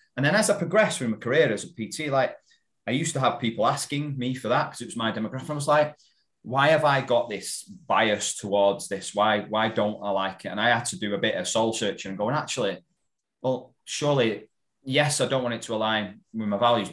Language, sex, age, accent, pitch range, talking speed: English, male, 30-49, British, 100-130 Hz, 240 wpm